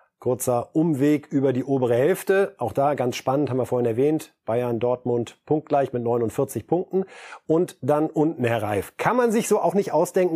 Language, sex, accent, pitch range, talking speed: German, male, German, 130-175 Hz, 185 wpm